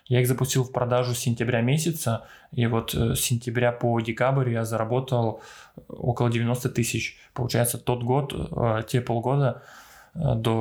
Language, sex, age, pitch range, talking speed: Russian, male, 20-39, 115-130 Hz, 140 wpm